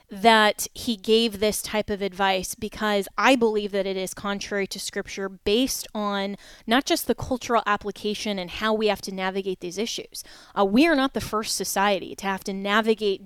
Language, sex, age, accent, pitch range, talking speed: English, female, 20-39, American, 200-230 Hz, 190 wpm